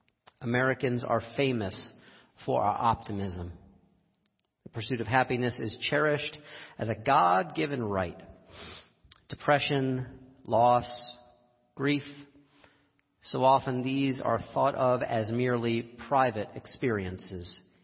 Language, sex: English, male